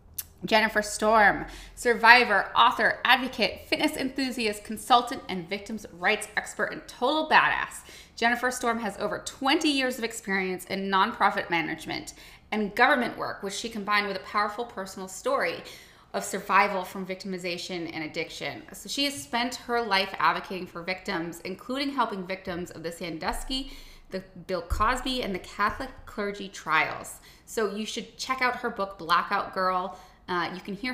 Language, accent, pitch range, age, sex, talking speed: English, American, 175-230 Hz, 20-39, female, 155 wpm